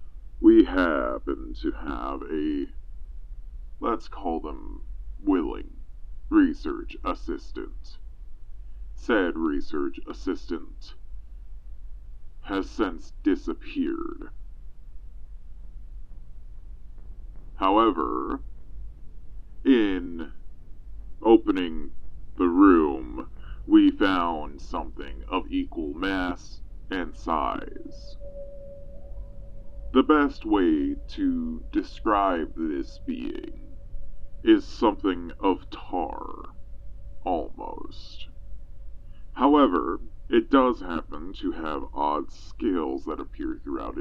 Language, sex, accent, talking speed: English, female, American, 70 wpm